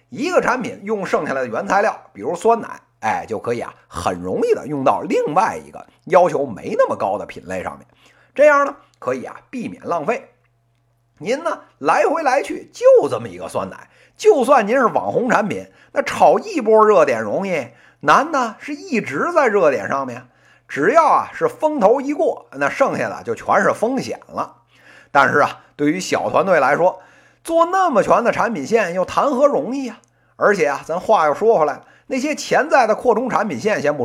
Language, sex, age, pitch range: Chinese, male, 50-69, 205-335 Hz